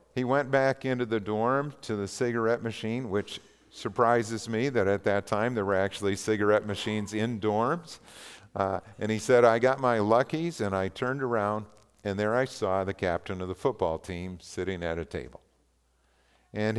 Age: 50-69